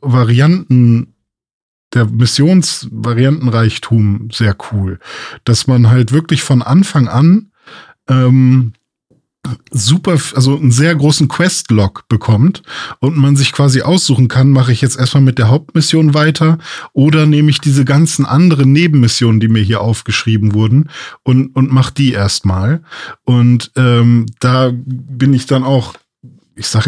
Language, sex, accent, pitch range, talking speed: German, male, German, 120-145 Hz, 135 wpm